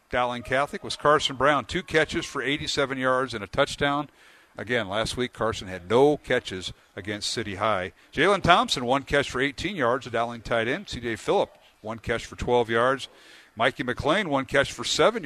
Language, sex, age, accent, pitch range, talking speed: English, male, 50-69, American, 115-150 Hz, 185 wpm